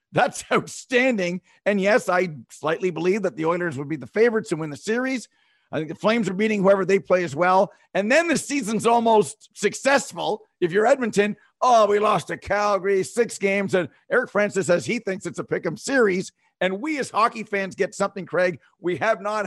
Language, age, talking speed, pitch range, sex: English, 50-69, 205 wpm, 155-215 Hz, male